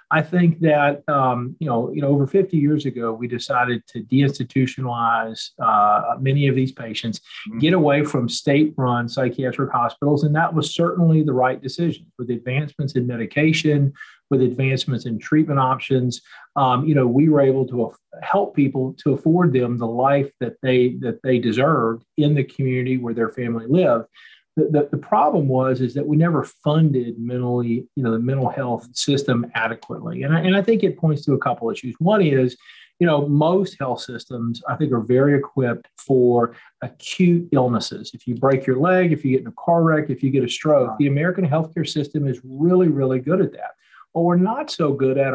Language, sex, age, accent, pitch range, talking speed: English, male, 40-59, American, 125-150 Hz, 195 wpm